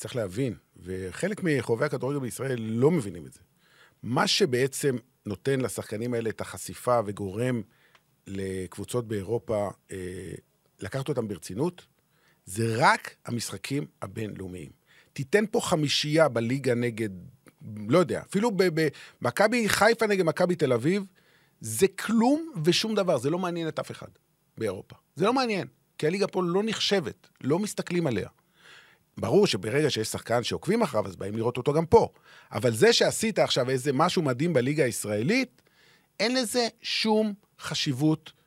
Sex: male